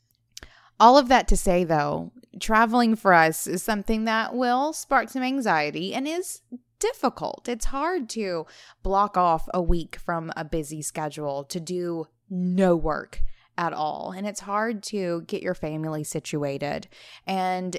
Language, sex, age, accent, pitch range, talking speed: English, female, 20-39, American, 155-205 Hz, 150 wpm